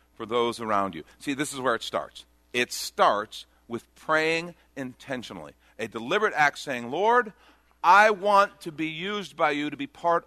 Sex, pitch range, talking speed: male, 105-170 Hz, 175 wpm